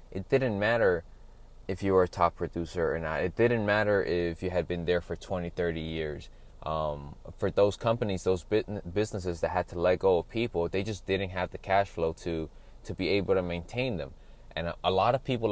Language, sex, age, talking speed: English, male, 20-39, 215 wpm